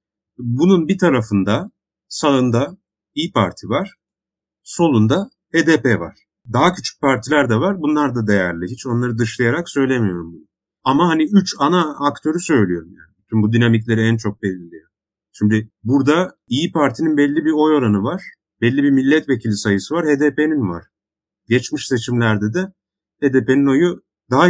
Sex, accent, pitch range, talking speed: male, native, 105-150 Hz, 145 wpm